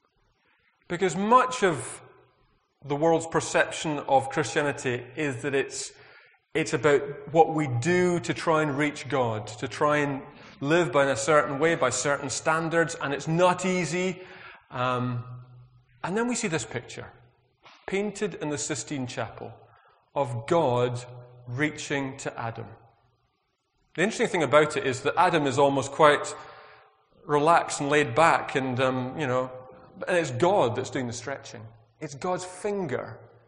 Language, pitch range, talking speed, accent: English, 120-160 Hz, 150 wpm, British